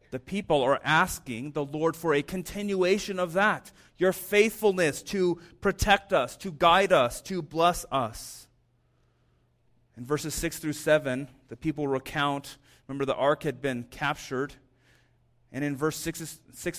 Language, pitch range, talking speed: English, 125-160 Hz, 145 wpm